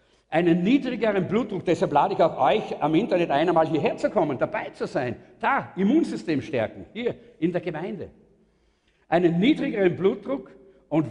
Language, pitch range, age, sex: German, 175-260 Hz, 50-69, male